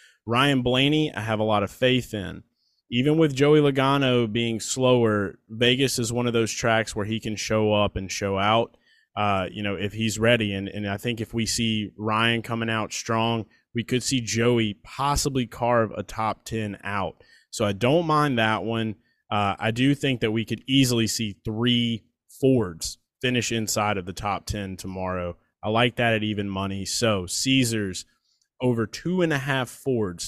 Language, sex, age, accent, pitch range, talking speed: English, male, 20-39, American, 100-120 Hz, 185 wpm